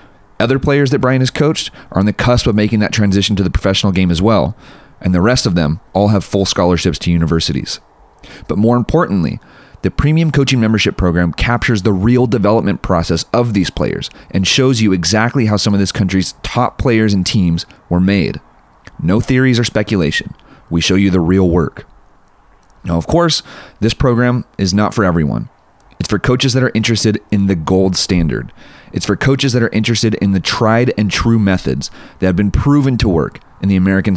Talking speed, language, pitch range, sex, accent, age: 195 wpm, English, 90-115 Hz, male, American, 30-49